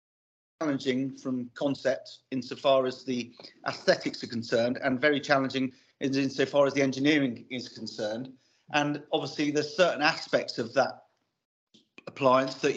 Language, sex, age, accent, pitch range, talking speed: English, male, 40-59, British, 130-155 Hz, 130 wpm